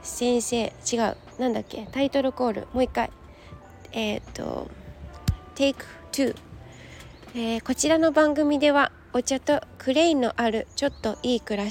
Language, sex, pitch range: Japanese, female, 230-280 Hz